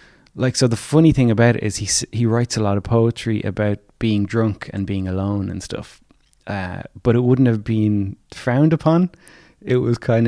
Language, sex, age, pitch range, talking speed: English, male, 20-39, 100-125 Hz, 200 wpm